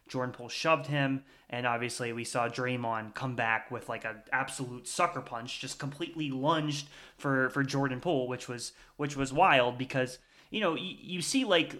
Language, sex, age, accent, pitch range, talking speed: English, male, 20-39, American, 125-150 Hz, 180 wpm